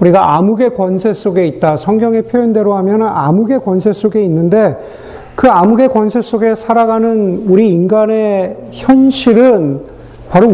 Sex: male